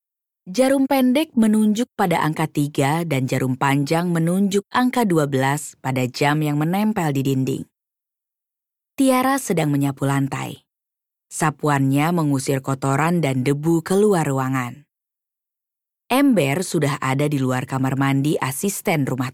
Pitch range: 140-200 Hz